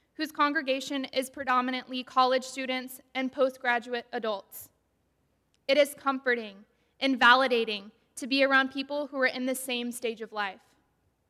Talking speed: 140 wpm